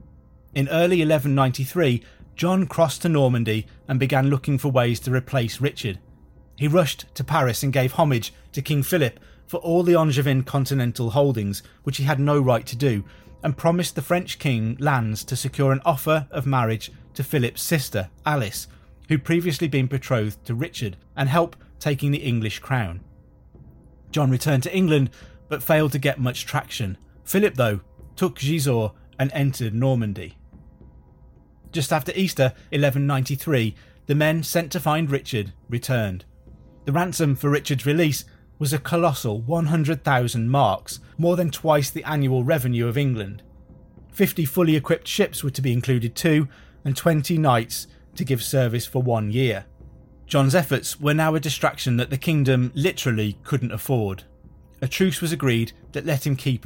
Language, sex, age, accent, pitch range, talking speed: English, male, 30-49, British, 115-155 Hz, 160 wpm